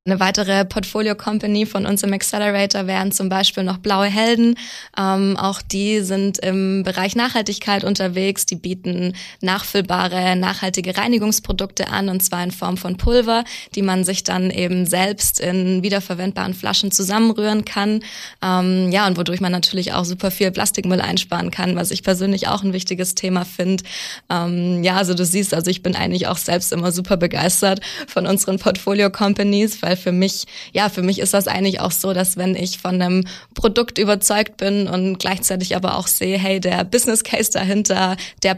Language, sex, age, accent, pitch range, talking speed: German, female, 20-39, German, 175-200 Hz, 170 wpm